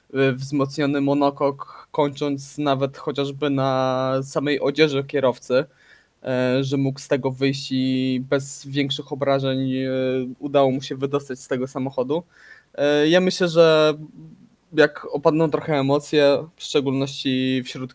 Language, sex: Polish, male